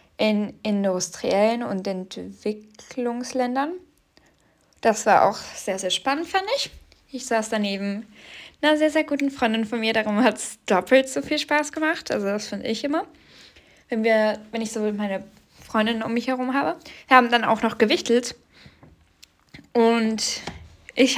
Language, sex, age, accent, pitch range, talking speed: German, female, 10-29, German, 215-295 Hz, 155 wpm